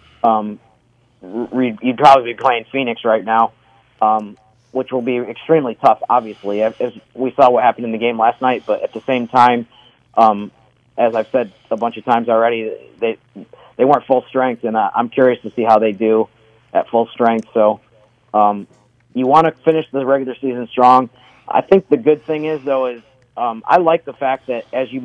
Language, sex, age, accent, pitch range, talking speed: English, male, 40-59, American, 115-130 Hz, 195 wpm